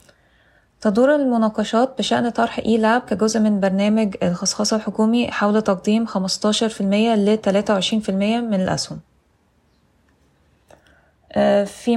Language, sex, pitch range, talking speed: Arabic, female, 195-230 Hz, 95 wpm